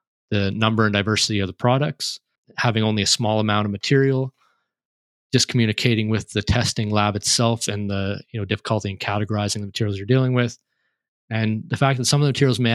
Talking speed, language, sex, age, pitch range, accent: 200 wpm, English, male, 20-39, 105-120 Hz, American